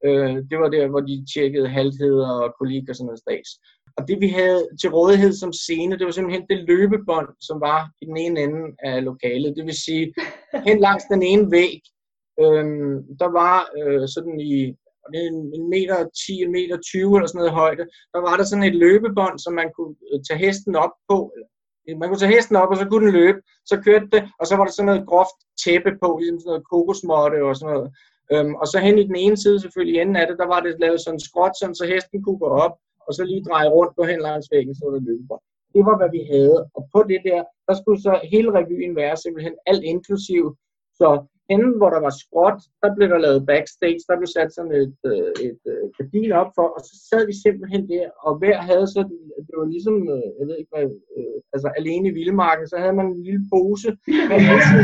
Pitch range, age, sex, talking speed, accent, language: 155-195 Hz, 20-39, male, 215 wpm, native, Danish